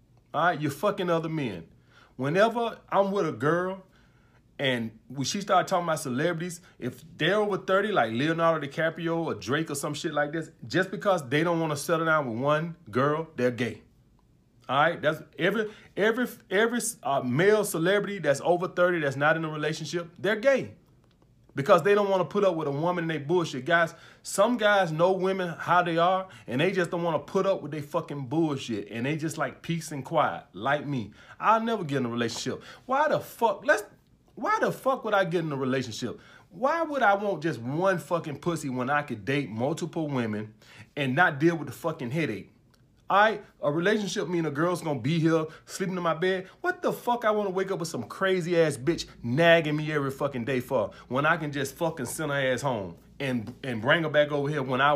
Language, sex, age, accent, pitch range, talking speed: English, male, 30-49, American, 135-180 Hz, 215 wpm